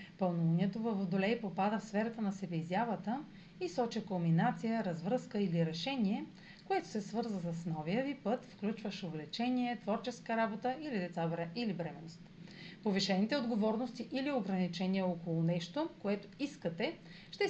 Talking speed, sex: 130 wpm, female